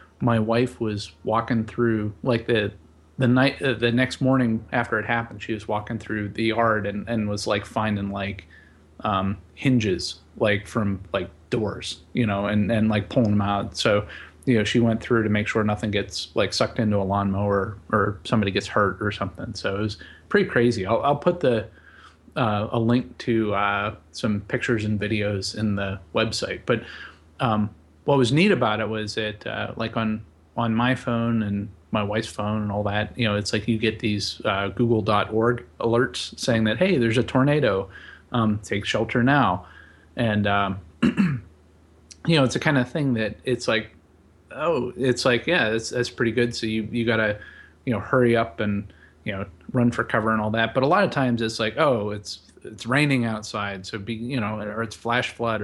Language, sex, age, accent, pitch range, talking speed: English, male, 30-49, American, 100-120 Hz, 200 wpm